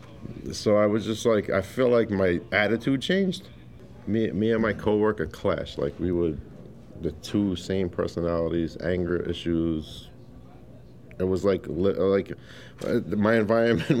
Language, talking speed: English, 135 wpm